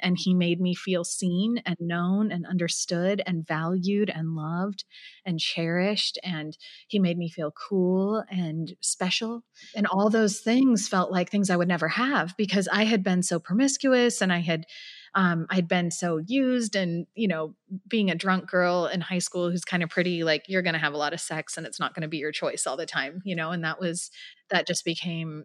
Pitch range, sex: 170-205 Hz, female